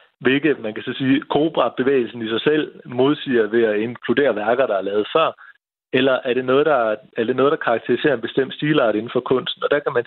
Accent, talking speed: native, 230 wpm